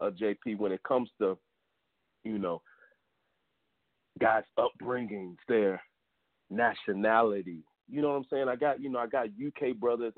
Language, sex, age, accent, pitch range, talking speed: English, male, 40-59, American, 90-120 Hz, 145 wpm